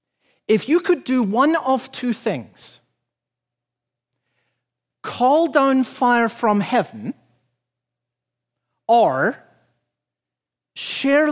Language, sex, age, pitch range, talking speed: English, male, 50-69, 170-270 Hz, 80 wpm